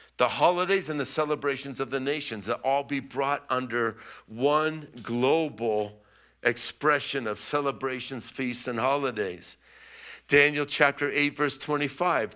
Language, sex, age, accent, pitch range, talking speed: English, male, 50-69, American, 125-150 Hz, 125 wpm